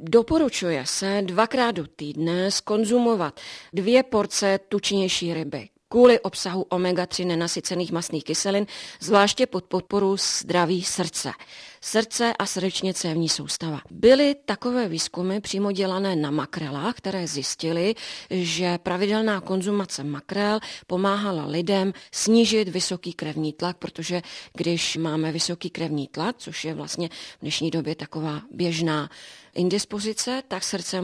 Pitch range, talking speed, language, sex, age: 170-205 Hz, 120 wpm, Czech, female, 30-49